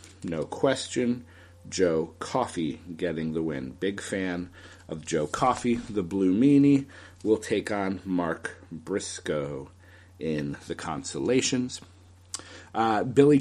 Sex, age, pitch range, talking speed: male, 40-59, 90-125 Hz, 110 wpm